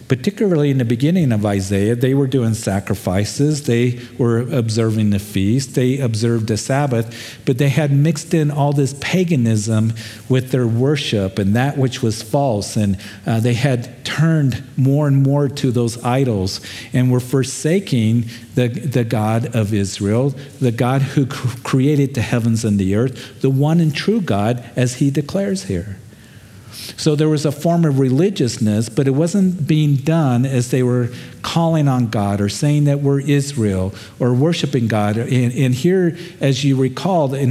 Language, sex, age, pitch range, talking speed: English, male, 50-69, 115-145 Hz, 170 wpm